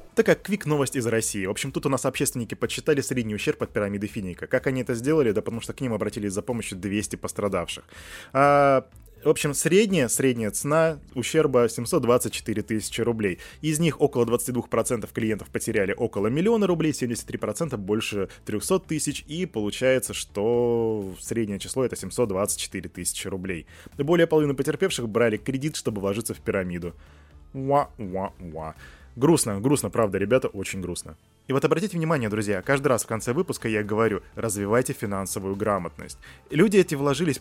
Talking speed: 155 wpm